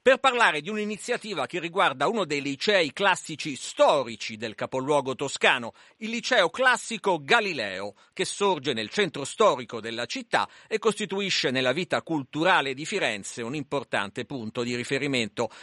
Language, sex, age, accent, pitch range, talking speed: Italian, male, 50-69, native, 145-210 Hz, 140 wpm